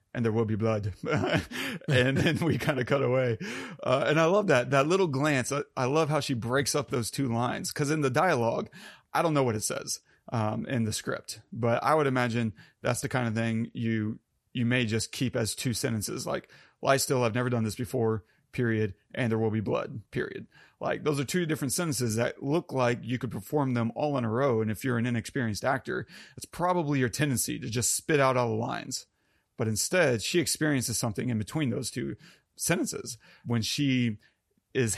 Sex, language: male, English